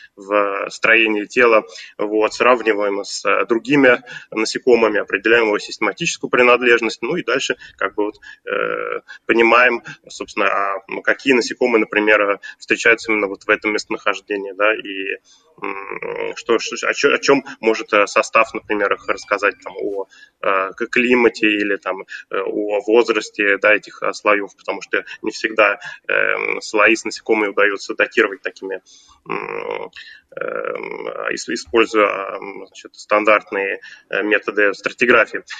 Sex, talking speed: male, 110 wpm